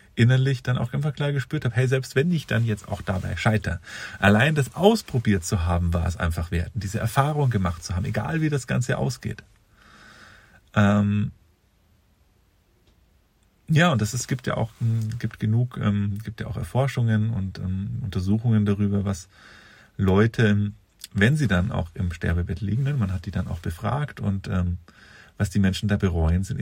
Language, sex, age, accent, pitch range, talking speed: German, male, 40-59, German, 95-115 Hz, 170 wpm